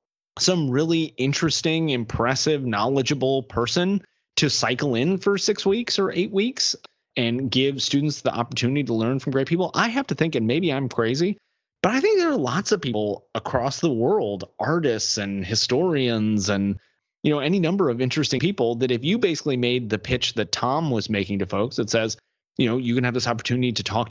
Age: 30-49